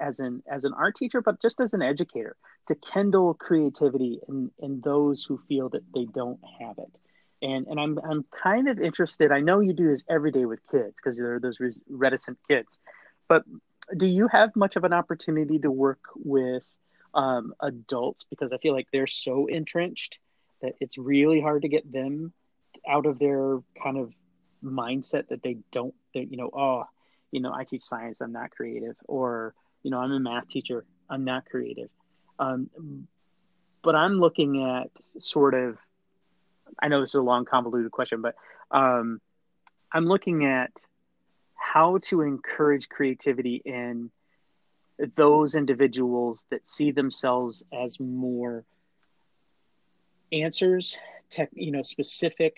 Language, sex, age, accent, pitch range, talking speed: English, male, 30-49, American, 125-160 Hz, 160 wpm